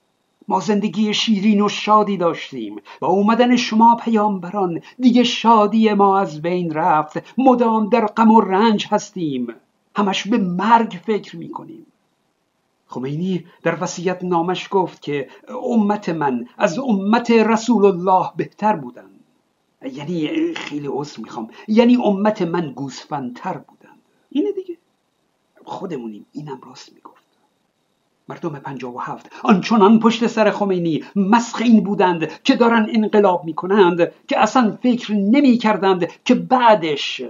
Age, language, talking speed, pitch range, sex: 50-69, Persian, 125 wpm, 170-230 Hz, male